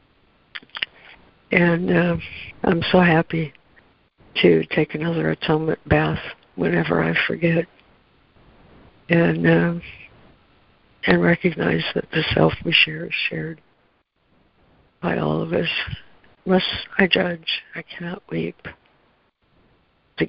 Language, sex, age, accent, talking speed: English, female, 60-79, American, 110 wpm